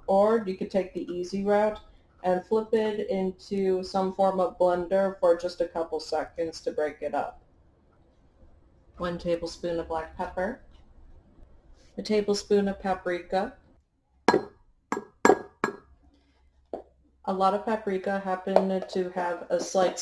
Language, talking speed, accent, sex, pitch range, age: English, 125 wpm, American, female, 165-195 Hz, 30-49